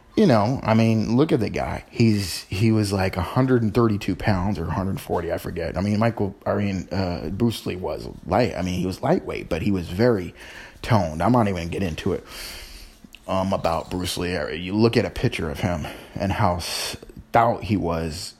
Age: 30-49